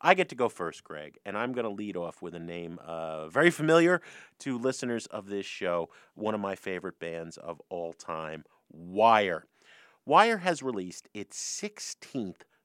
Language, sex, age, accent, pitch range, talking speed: English, male, 40-59, American, 90-155 Hz, 175 wpm